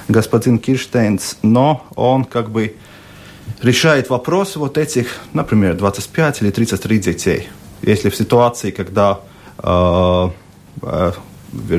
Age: 40-59